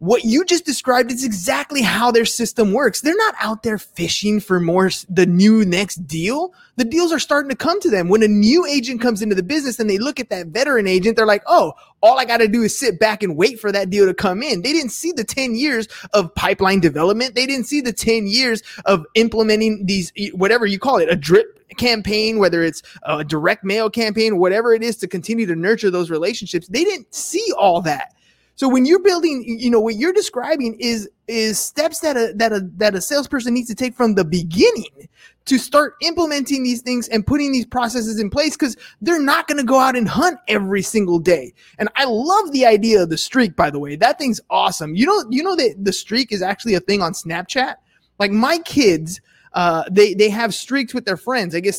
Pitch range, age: 195-260 Hz, 20-39